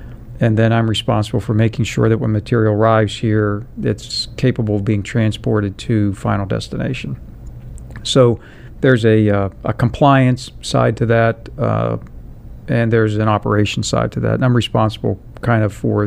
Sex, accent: male, American